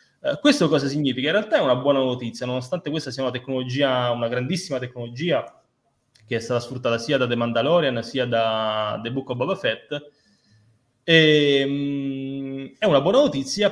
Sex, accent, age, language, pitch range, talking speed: male, native, 20-39, Italian, 120-145 Hz, 160 wpm